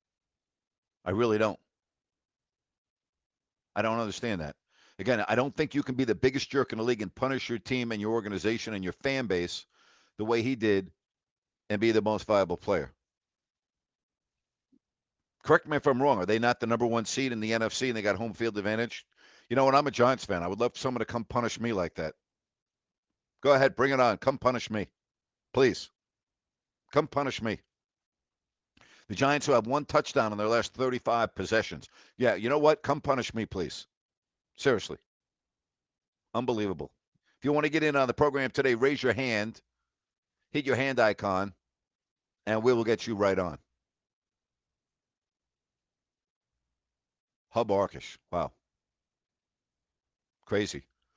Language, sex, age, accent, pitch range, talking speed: English, male, 60-79, American, 100-130 Hz, 165 wpm